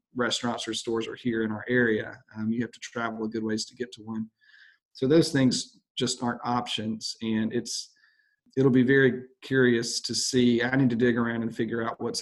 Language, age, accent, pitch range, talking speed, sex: English, 40-59, American, 115-130 Hz, 210 wpm, male